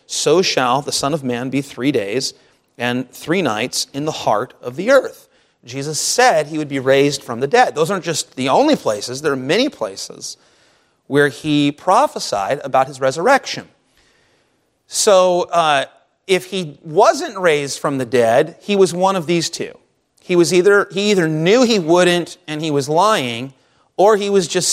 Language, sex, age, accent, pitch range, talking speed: English, male, 30-49, American, 145-200 Hz, 175 wpm